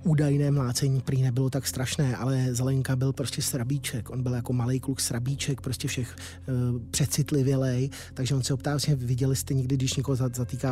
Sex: male